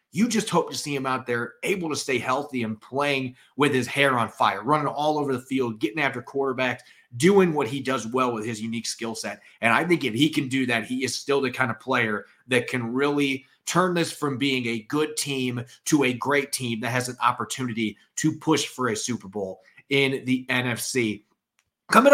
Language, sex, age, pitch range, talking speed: English, male, 30-49, 125-155 Hz, 215 wpm